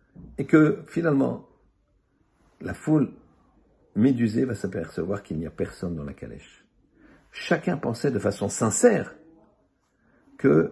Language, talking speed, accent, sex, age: French, 120 wpm, French, male, 60-79